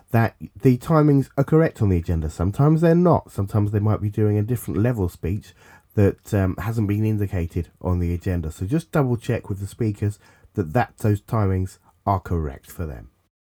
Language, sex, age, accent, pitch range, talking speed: English, male, 30-49, British, 95-130 Hz, 190 wpm